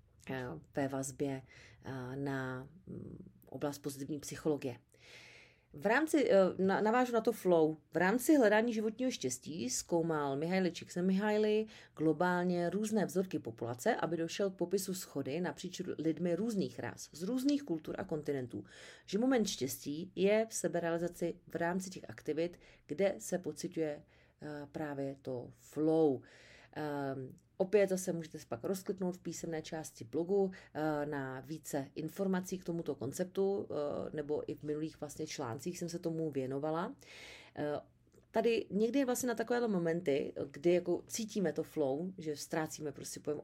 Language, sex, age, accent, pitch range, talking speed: English, female, 40-59, Czech, 145-190 Hz, 135 wpm